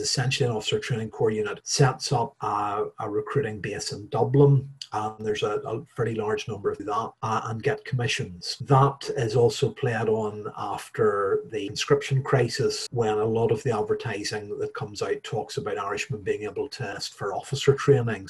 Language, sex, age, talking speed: English, male, 30-49, 185 wpm